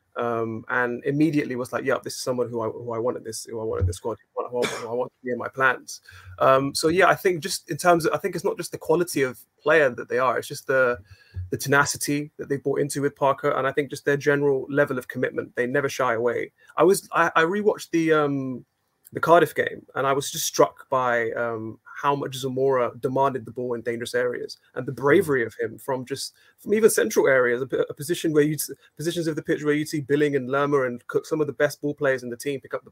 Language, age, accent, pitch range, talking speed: English, 30-49, British, 130-160 Hz, 255 wpm